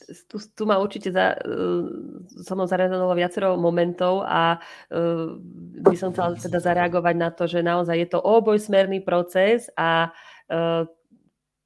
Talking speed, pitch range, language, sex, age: 145 wpm, 160-185 Hz, Slovak, female, 30-49